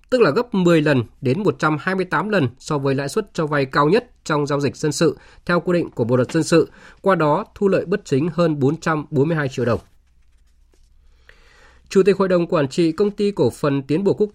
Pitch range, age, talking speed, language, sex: 135-165 Hz, 20-39, 220 wpm, Vietnamese, male